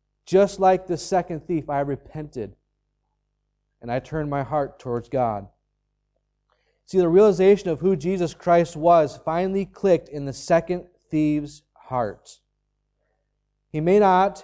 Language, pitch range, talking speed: English, 140-175 Hz, 135 wpm